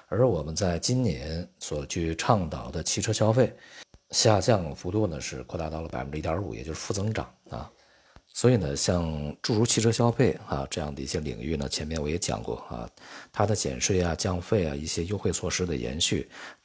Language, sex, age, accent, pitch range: Chinese, male, 50-69, native, 75-105 Hz